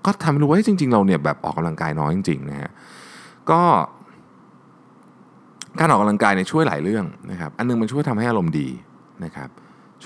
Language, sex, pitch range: Thai, male, 85-115 Hz